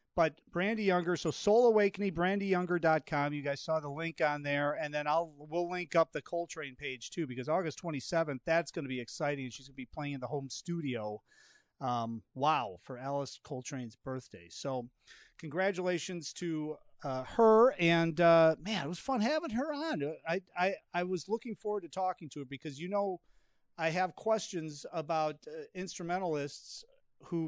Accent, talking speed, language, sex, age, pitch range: American, 170 wpm, English, male, 40-59, 145-180 Hz